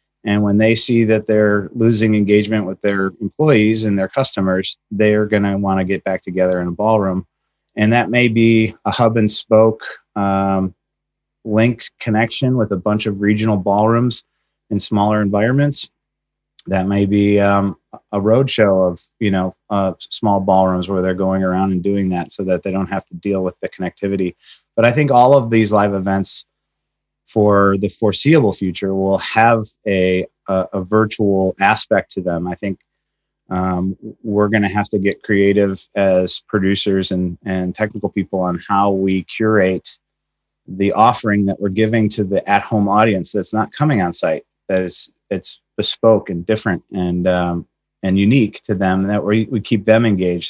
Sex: male